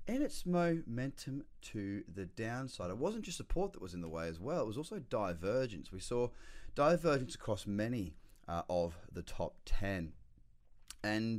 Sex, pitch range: male, 95-140 Hz